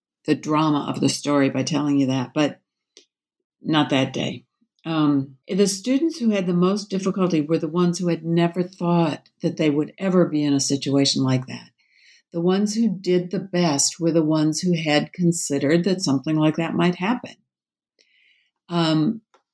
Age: 60-79